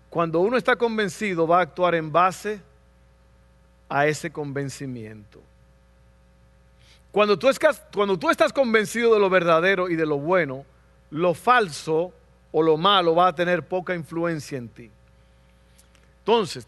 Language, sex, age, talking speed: Spanish, male, 50-69, 130 wpm